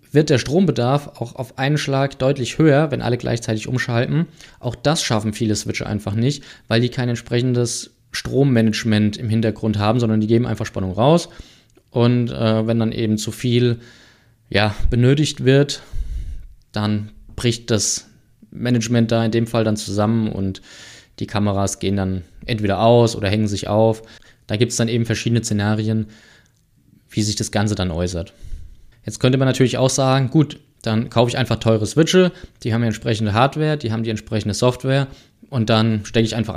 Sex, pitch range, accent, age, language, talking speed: male, 110-130 Hz, German, 20-39, German, 170 wpm